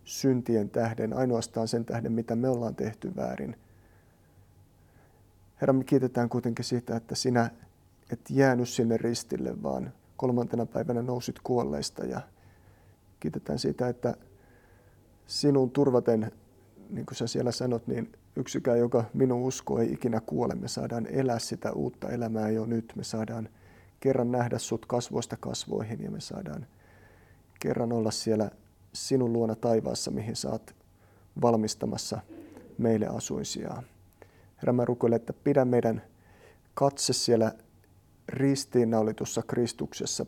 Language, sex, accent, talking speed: Finnish, male, native, 120 wpm